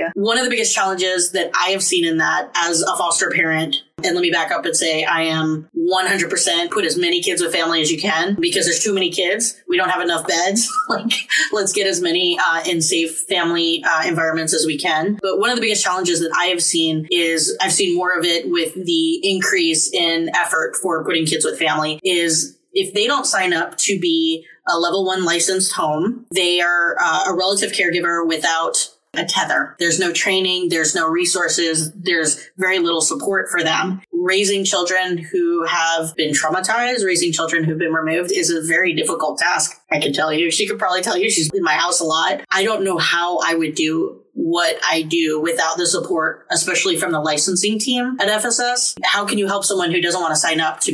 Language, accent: English, American